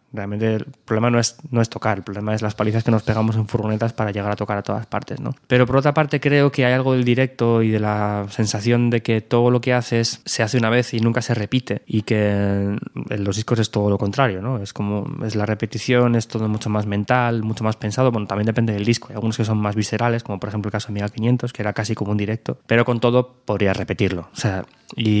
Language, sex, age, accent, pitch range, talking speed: Spanish, male, 20-39, Spanish, 105-120 Hz, 260 wpm